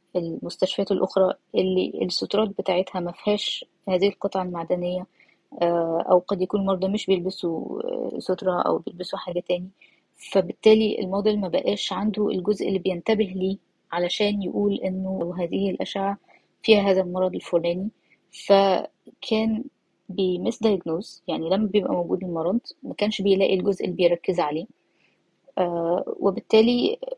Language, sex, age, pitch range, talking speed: Arabic, female, 20-39, 180-215 Hz, 120 wpm